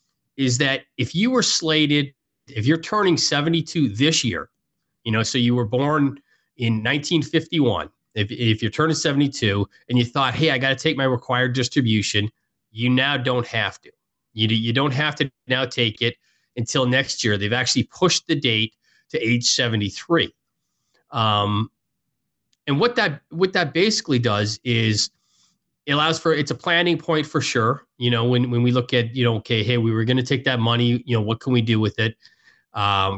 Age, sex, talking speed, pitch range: 30-49, male, 190 wpm, 110-145 Hz